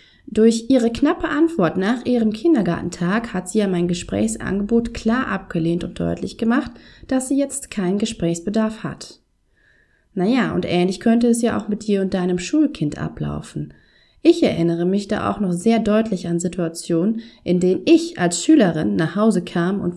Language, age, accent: German, 30-49, German